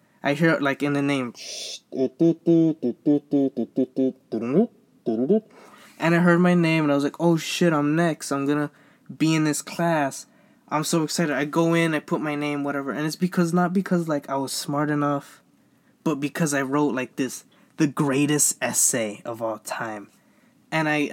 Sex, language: male, English